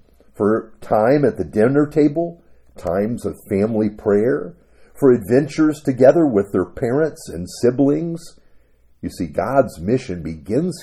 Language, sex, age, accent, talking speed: English, male, 50-69, American, 125 wpm